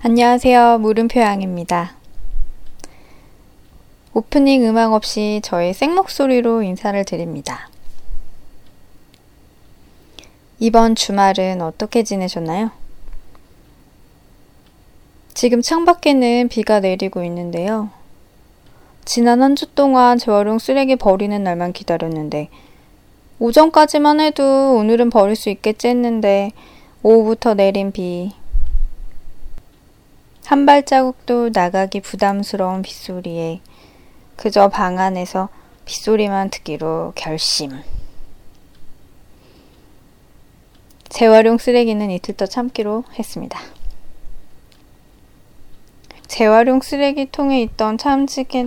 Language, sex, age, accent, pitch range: Korean, female, 20-39, native, 185-240 Hz